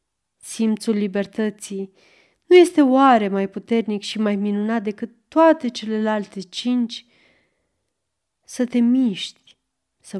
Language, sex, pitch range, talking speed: Romanian, female, 195-250 Hz, 105 wpm